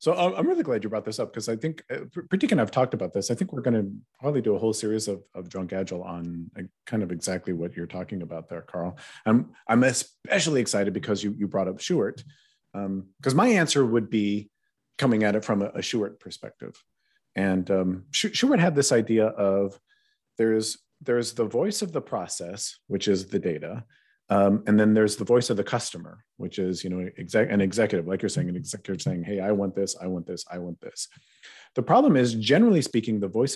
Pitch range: 95-120 Hz